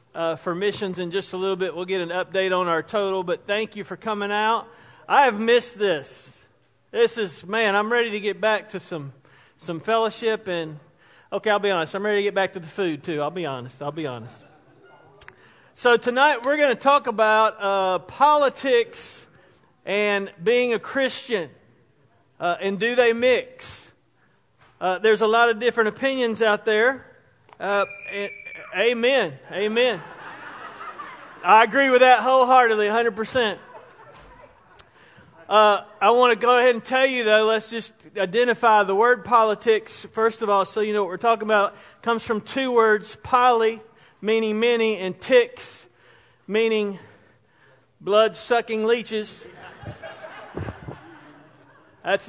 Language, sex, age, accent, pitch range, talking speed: English, male, 40-59, American, 185-235 Hz, 155 wpm